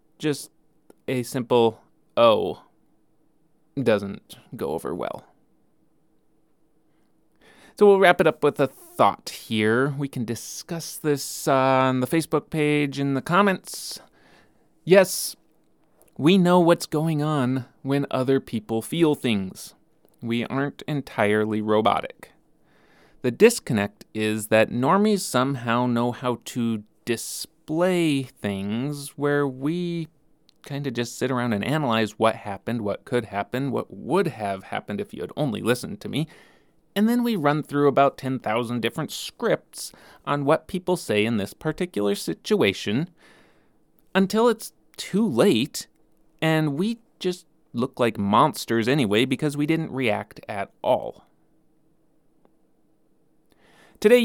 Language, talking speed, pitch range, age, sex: English, 130 wpm, 115-160 Hz, 30-49, male